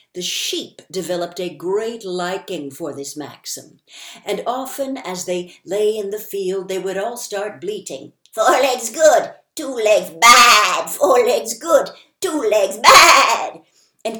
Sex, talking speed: female, 150 wpm